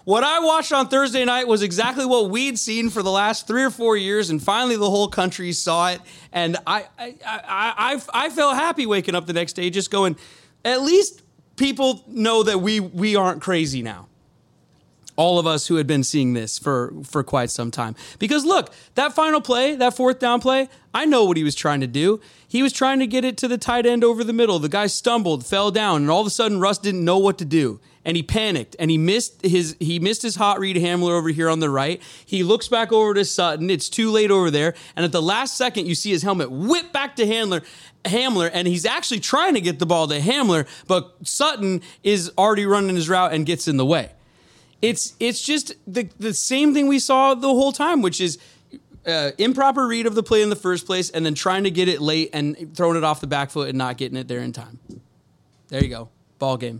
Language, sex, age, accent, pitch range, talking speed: English, male, 30-49, American, 165-240 Hz, 235 wpm